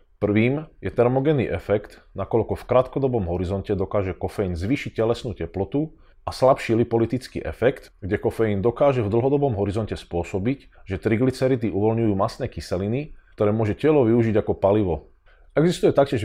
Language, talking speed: Slovak, 135 wpm